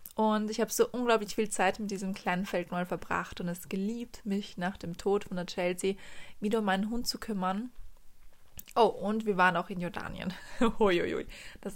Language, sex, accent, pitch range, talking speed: German, female, German, 185-220 Hz, 190 wpm